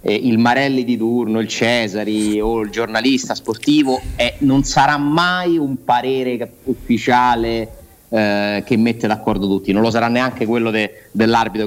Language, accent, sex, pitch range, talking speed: Italian, native, male, 110-145 Hz, 145 wpm